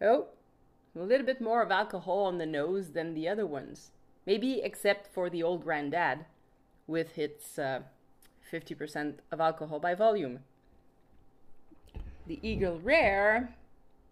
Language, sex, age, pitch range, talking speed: English, female, 30-49, 165-220 Hz, 130 wpm